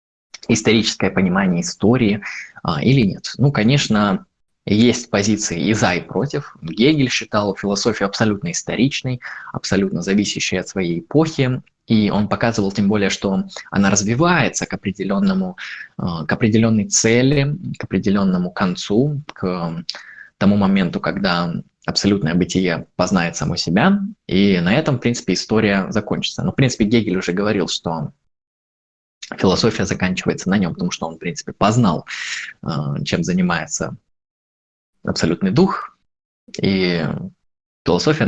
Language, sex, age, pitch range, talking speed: Russian, male, 20-39, 95-140 Hz, 120 wpm